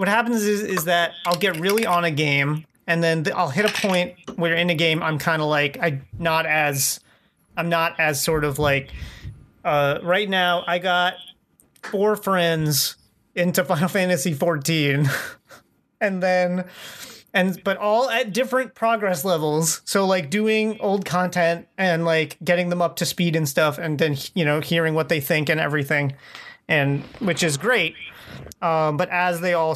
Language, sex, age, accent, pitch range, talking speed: English, male, 30-49, American, 155-185 Hz, 175 wpm